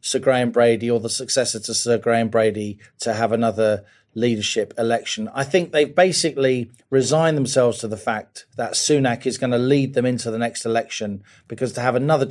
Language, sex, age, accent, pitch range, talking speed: English, male, 40-59, British, 110-135 Hz, 195 wpm